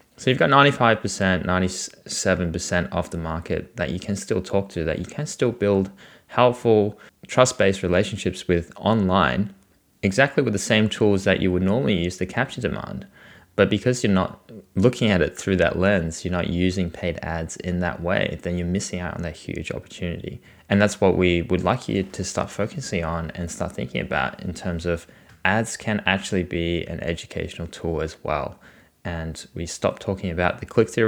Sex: male